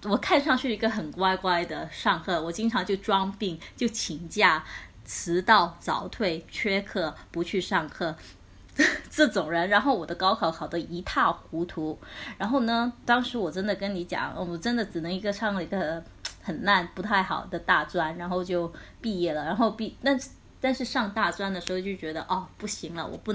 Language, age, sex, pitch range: Chinese, 20-39, female, 175-225 Hz